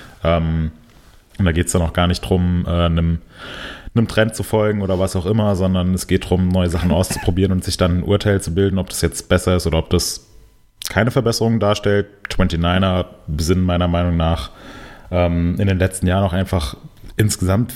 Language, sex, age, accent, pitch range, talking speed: German, male, 20-39, German, 90-100 Hz, 185 wpm